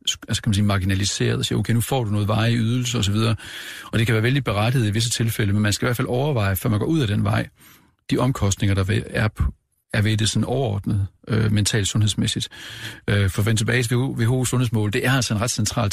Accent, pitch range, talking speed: native, 105-120 Hz, 240 wpm